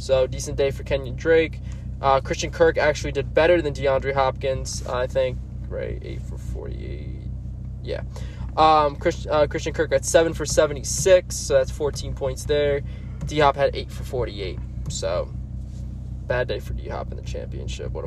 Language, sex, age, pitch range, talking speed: English, male, 20-39, 130-155 Hz, 165 wpm